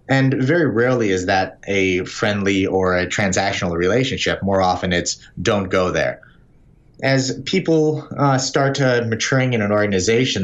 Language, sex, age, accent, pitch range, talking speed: English, male, 30-49, American, 105-135 Hz, 150 wpm